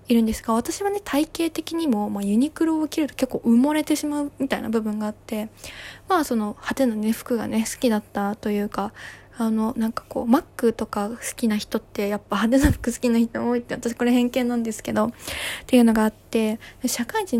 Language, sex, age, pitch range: Japanese, female, 20-39, 225-275 Hz